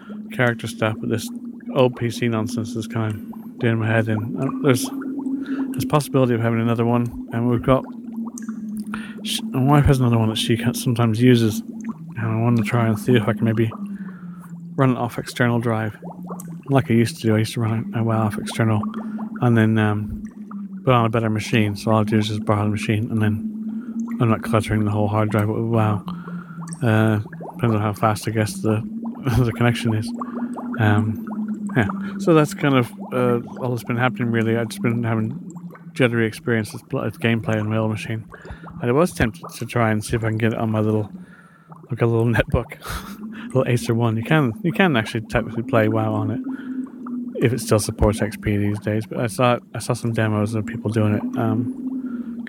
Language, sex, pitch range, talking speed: English, male, 110-175 Hz, 210 wpm